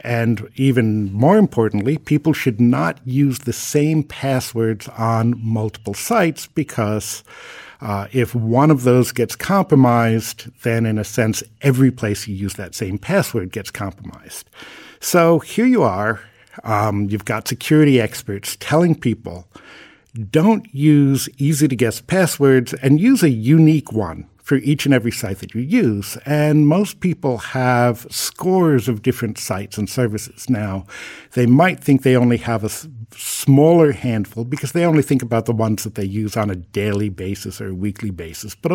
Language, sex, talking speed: English, male, 160 wpm